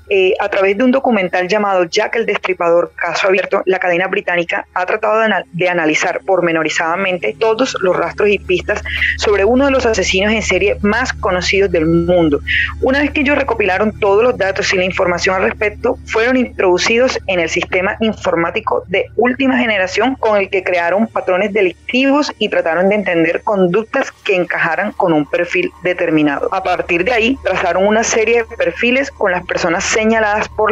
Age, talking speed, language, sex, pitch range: 30-49, 180 wpm, Spanish, female, 180-225 Hz